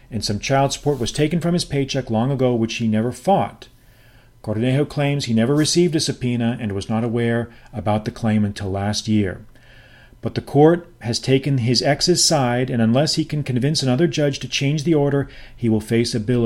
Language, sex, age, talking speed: English, male, 40-59, 205 wpm